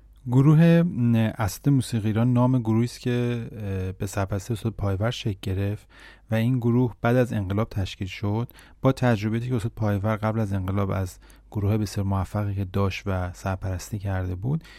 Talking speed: 155 wpm